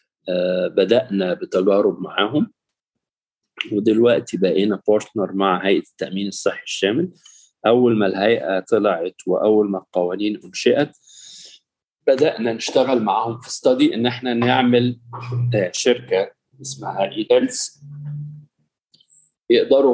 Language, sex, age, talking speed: Arabic, male, 40-59, 95 wpm